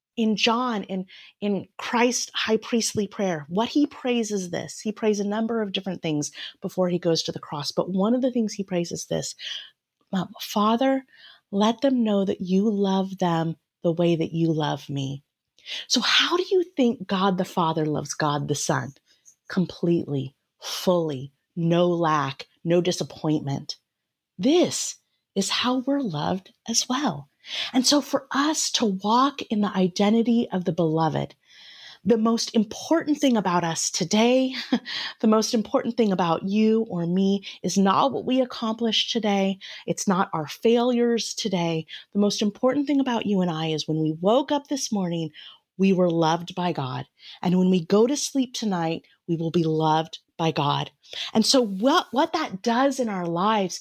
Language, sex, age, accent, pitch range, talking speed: English, female, 30-49, American, 170-235 Hz, 170 wpm